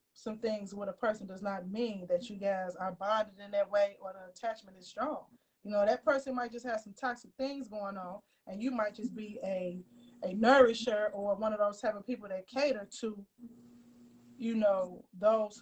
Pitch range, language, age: 200-245 Hz, English, 20-39